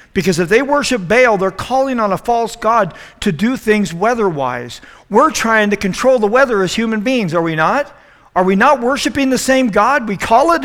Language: English